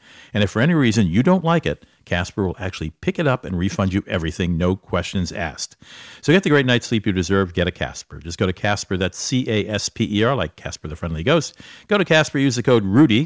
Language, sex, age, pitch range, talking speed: English, male, 50-69, 95-125 Hz, 255 wpm